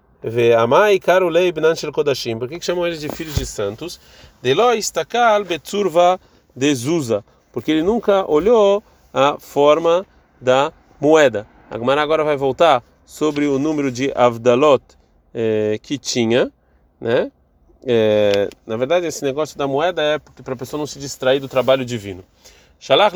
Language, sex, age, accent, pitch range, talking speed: Portuguese, male, 30-49, Brazilian, 125-170 Hz, 135 wpm